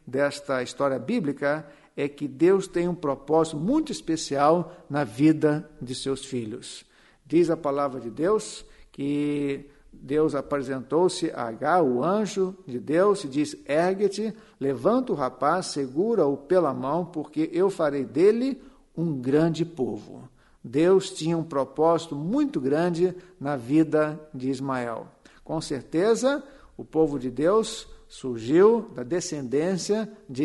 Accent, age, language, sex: Brazilian, 50-69, Portuguese, male